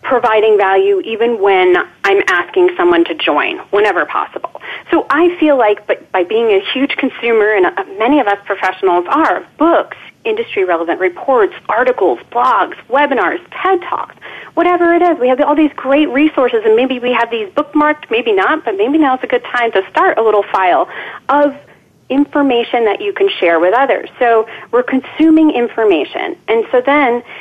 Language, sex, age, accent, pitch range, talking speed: English, female, 30-49, American, 240-365 Hz, 170 wpm